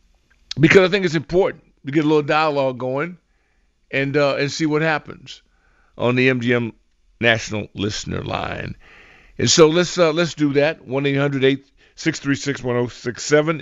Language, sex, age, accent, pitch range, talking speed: English, male, 50-69, American, 115-150 Hz, 140 wpm